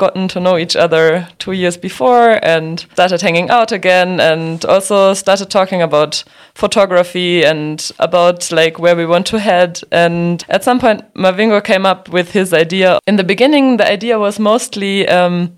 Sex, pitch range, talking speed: female, 170-200 Hz, 175 wpm